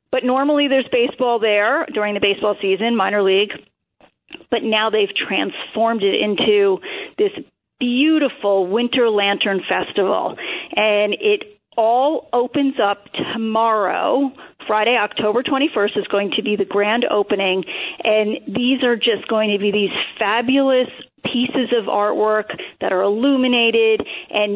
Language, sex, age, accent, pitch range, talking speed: English, female, 40-59, American, 210-250 Hz, 130 wpm